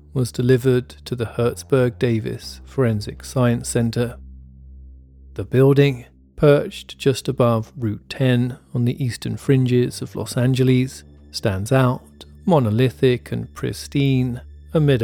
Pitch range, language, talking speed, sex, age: 105-130 Hz, English, 110 wpm, male, 40-59